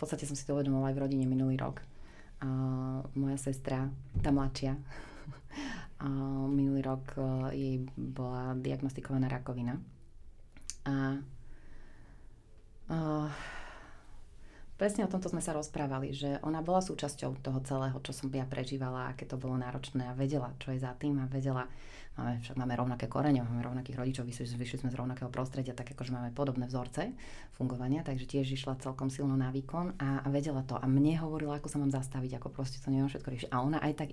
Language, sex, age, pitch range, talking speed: Slovak, female, 30-49, 130-145 Hz, 175 wpm